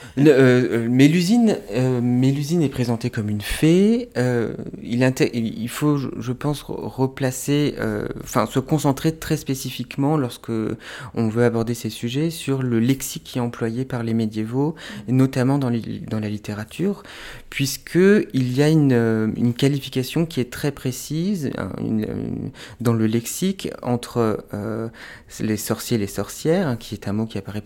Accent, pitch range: French, 105-135 Hz